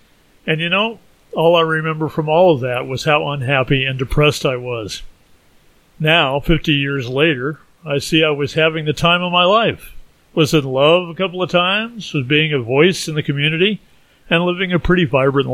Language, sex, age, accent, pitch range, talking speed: English, male, 40-59, American, 130-160 Hz, 195 wpm